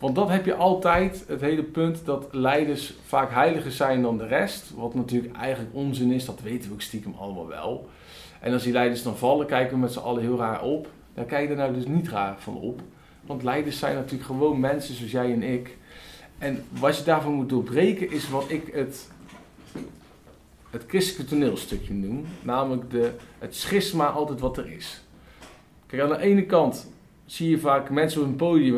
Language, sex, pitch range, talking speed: Dutch, male, 130-165 Hz, 200 wpm